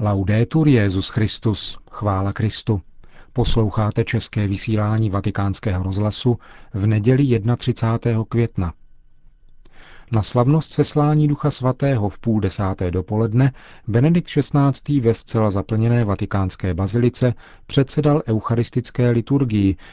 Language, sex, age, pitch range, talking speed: Czech, male, 40-59, 100-125 Hz, 100 wpm